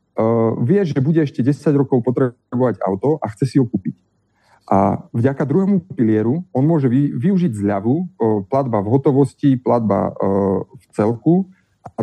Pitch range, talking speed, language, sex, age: 110-150 Hz, 140 wpm, Slovak, male, 30-49